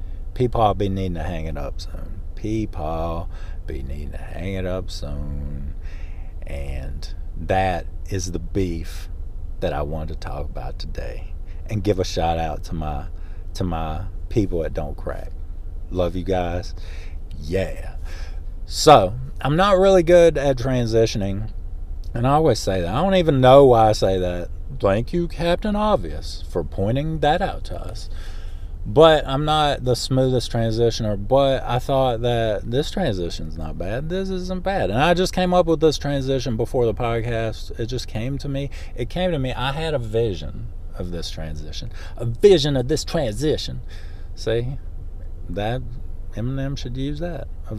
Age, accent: 40-59, American